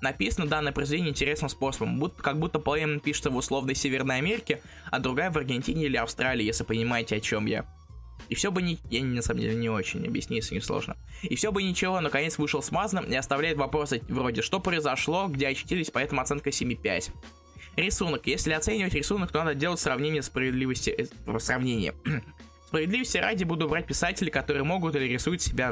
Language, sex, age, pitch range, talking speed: Russian, male, 20-39, 115-155 Hz, 175 wpm